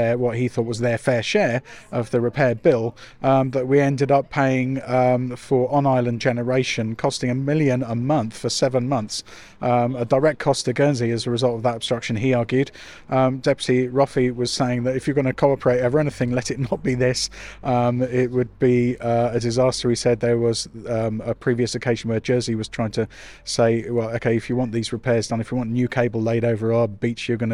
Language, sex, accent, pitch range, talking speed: English, male, British, 120-135 Hz, 220 wpm